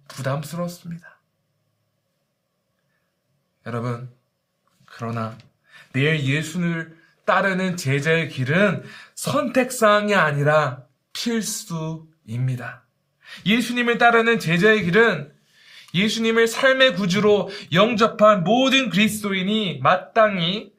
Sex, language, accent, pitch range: male, Korean, native, 145-210 Hz